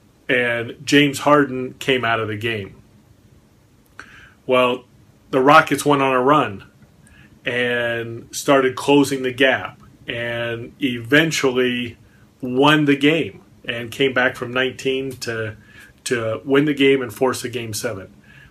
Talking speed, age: 130 wpm, 30-49